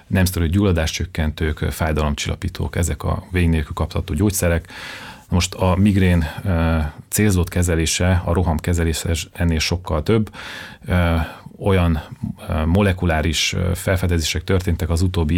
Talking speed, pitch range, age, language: 100 wpm, 80-95 Hz, 30-49, Hungarian